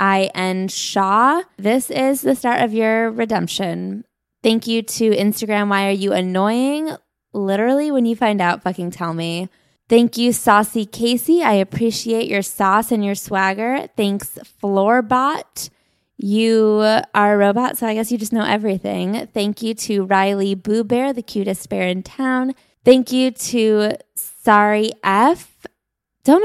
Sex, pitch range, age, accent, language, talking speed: female, 200-240 Hz, 20-39, American, English, 150 wpm